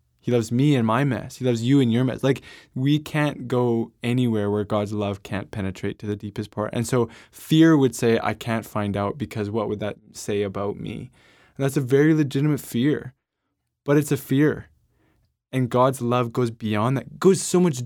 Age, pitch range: 20-39, 100-125 Hz